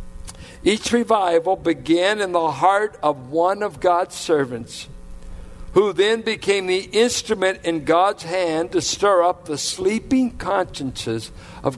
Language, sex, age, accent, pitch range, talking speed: English, male, 60-79, American, 165-205 Hz, 130 wpm